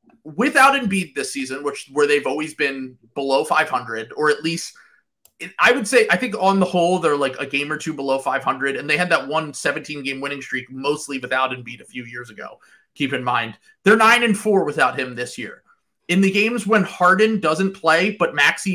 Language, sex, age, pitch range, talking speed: English, male, 30-49, 155-205 Hz, 220 wpm